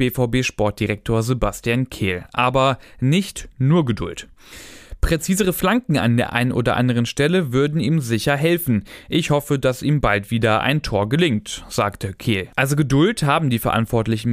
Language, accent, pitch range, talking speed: German, German, 115-150 Hz, 145 wpm